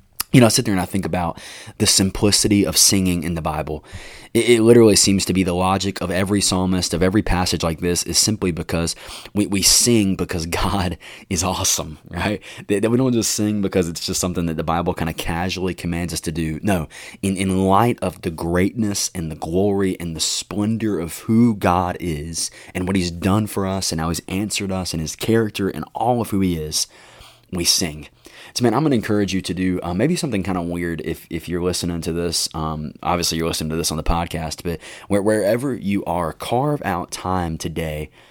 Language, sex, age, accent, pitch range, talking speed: English, male, 20-39, American, 85-100 Hz, 220 wpm